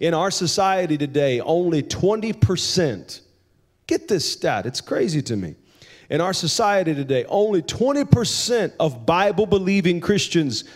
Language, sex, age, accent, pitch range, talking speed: English, male, 40-59, American, 130-180 Hz, 125 wpm